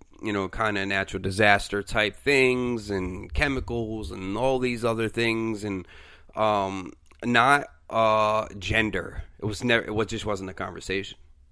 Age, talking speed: 30-49, 145 wpm